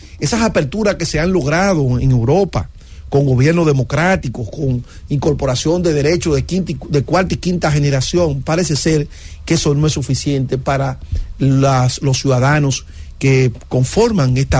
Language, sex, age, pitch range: English, male, 40-59, 125-170 Hz